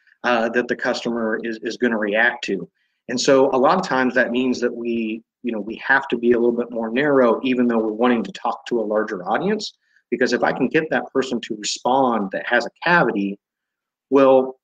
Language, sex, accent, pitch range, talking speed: English, male, American, 115-135 Hz, 225 wpm